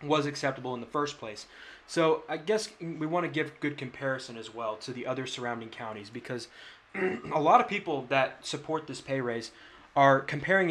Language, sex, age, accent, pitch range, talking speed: English, male, 20-39, American, 125-155 Hz, 190 wpm